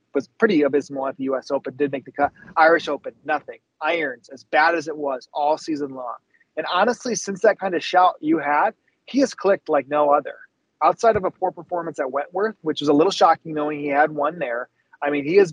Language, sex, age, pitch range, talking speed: English, male, 30-49, 145-180 Hz, 230 wpm